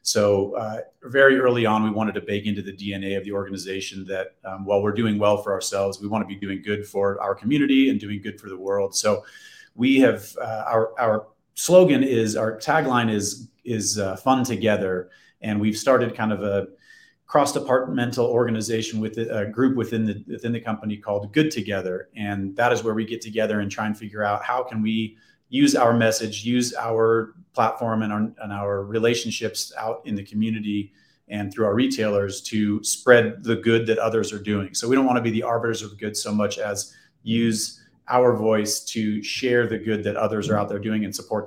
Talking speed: 205 wpm